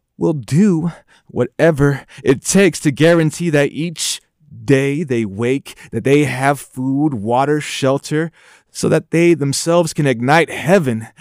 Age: 30-49